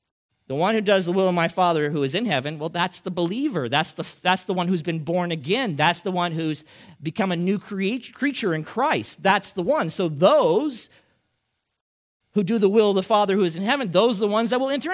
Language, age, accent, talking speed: English, 40-59, American, 240 wpm